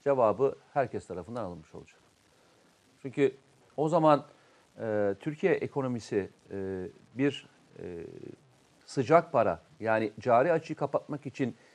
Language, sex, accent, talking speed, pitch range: Turkish, male, native, 105 wpm, 125-180 Hz